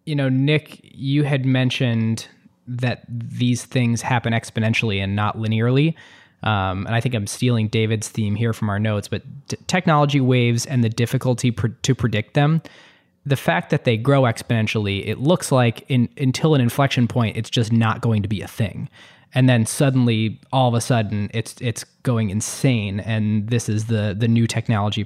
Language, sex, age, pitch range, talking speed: English, male, 20-39, 105-125 Hz, 185 wpm